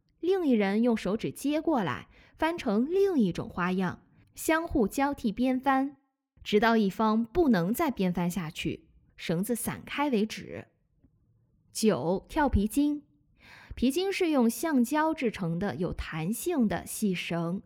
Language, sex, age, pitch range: Chinese, female, 20-39, 185-290 Hz